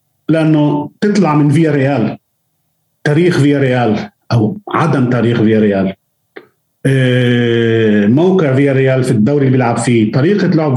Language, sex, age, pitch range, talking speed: Arabic, male, 40-59, 125-160 Hz, 130 wpm